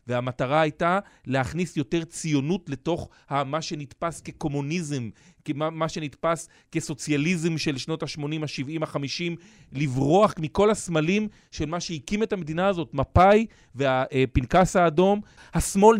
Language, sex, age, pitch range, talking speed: Hebrew, male, 40-59, 140-175 Hz, 115 wpm